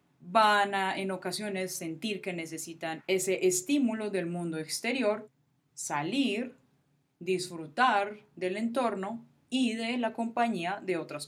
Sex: female